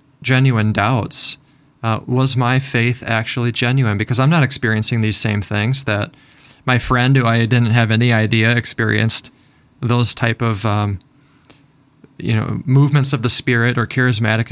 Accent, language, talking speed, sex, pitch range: American, English, 155 wpm, male, 115-140 Hz